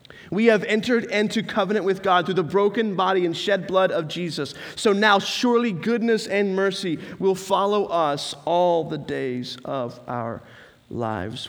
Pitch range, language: 130-185 Hz, English